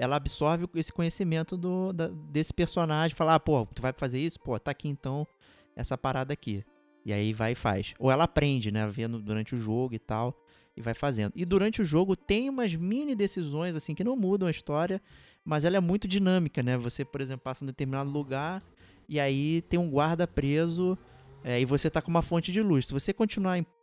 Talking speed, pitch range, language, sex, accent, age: 215 wpm, 130-175 Hz, Portuguese, male, Brazilian, 20-39